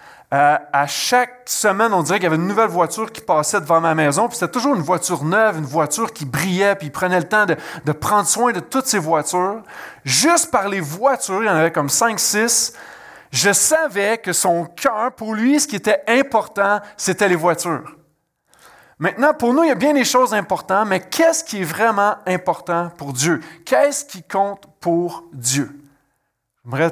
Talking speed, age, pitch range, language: 200 wpm, 30-49, 155-220 Hz, French